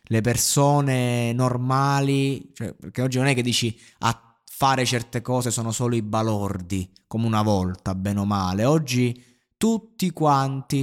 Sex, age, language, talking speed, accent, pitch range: male, 20-39, Italian, 150 wpm, native, 110-135 Hz